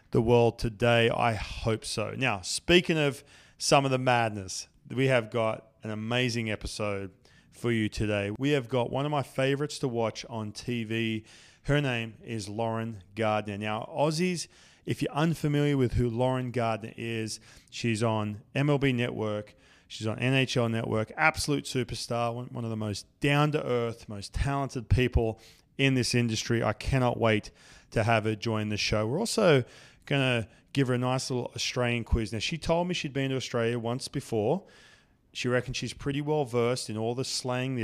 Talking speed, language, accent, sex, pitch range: 175 wpm, English, Australian, male, 110-135 Hz